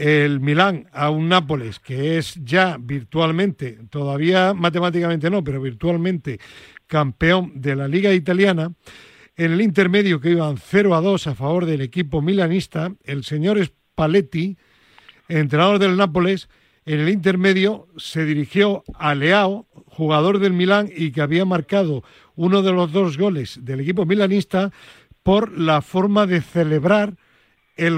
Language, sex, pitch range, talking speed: Spanish, male, 155-195 Hz, 140 wpm